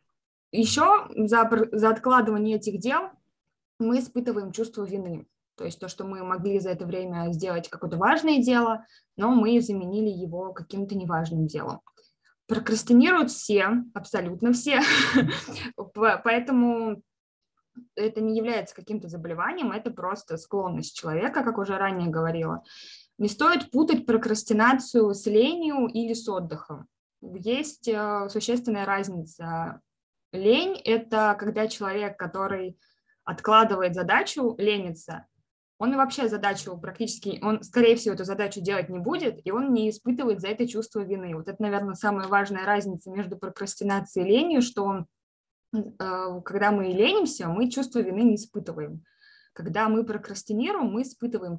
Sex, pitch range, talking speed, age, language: female, 190-235 Hz, 130 wpm, 20-39, Russian